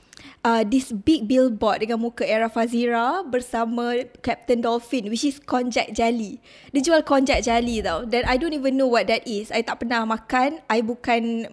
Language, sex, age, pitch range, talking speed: Malay, female, 20-39, 235-295 Hz, 175 wpm